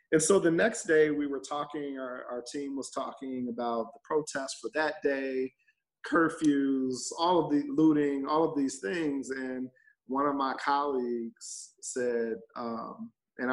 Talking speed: 160 wpm